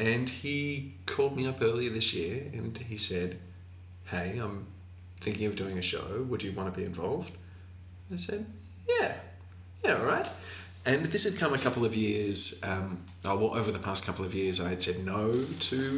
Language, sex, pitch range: English, male, 90-110 Hz